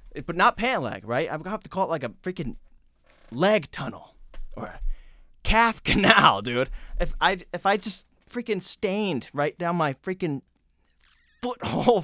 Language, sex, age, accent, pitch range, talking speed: English, male, 20-39, American, 150-235 Hz, 165 wpm